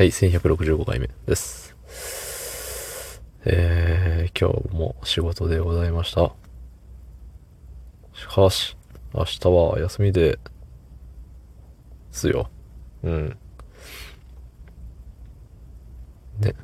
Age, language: 20-39, Japanese